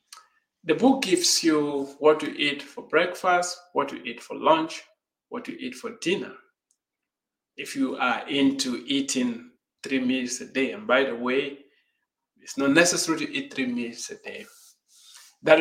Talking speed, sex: 160 wpm, male